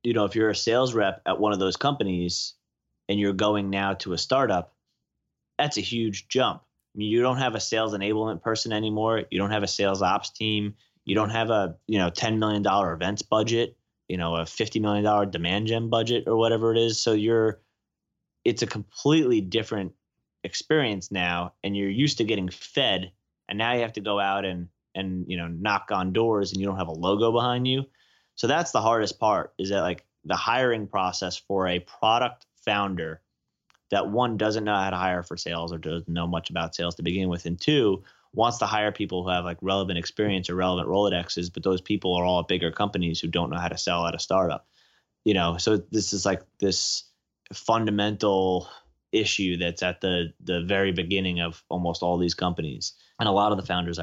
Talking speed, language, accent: 210 wpm, English, American